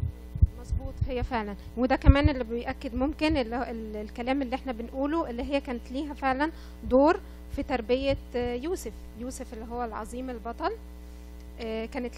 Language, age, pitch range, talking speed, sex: Arabic, 20-39, 230-280 Hz, 135 wpm, female